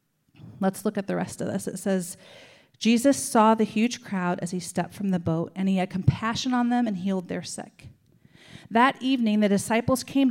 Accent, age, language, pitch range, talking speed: American, 40-59, English, 190-235 Hz, 205 wpm